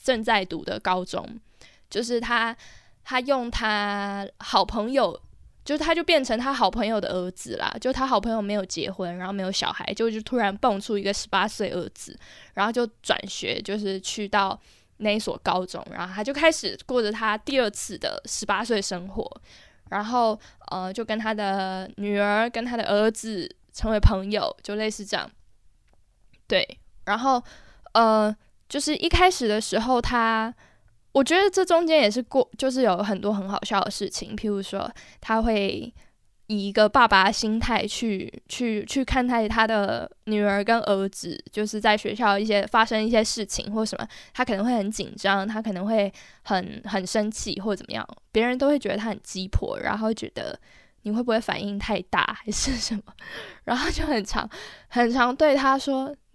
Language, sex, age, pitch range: Chinese, female, 10-29, 200-240 Hz